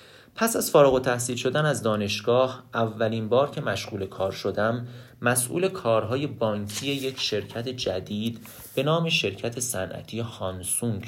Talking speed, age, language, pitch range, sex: 135 wpm, 30-49, Persian, 110-135 Hz, male